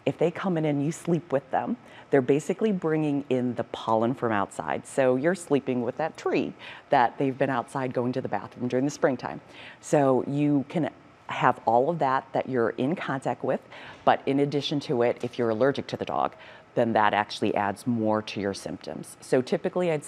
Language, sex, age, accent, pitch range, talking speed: English, female, 40-59, American, 115-150 Hz, 205 wpm